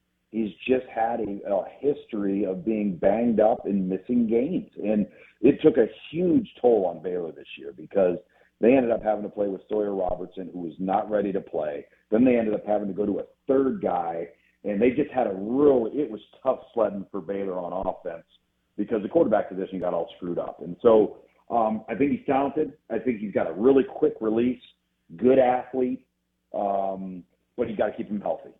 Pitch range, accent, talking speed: 95-120 Hz, American, 205 wpm